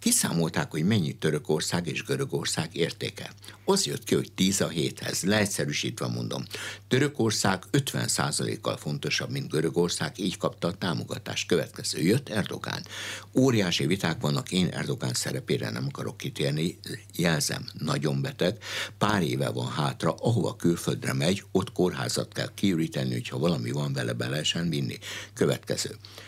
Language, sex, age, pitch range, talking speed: Hungarian, male, 60-79, 70-105 Hz, 135 wpm